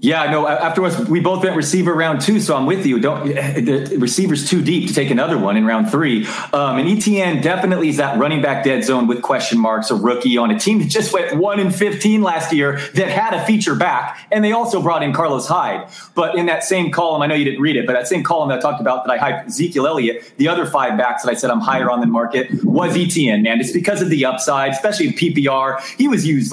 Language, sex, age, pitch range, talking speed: English, male, 30-49, 125-190 Hz, 255 wpm